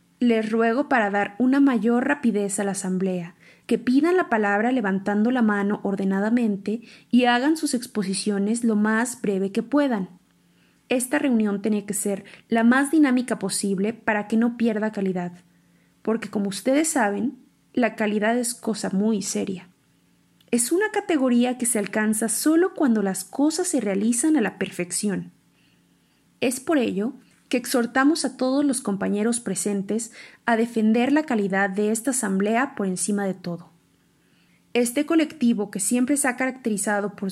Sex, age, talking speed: female, 30-49, 155 wpm